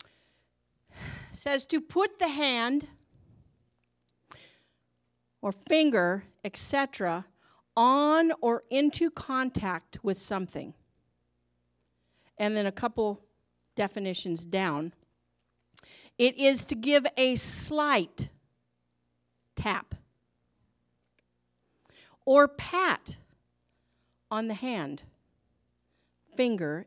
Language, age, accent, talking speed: English, 50-69, American, 75 wpm